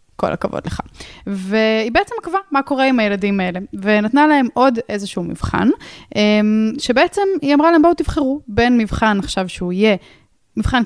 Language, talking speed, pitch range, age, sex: Hebrew, 155 wpm, 210-295 Hz, 10-29, female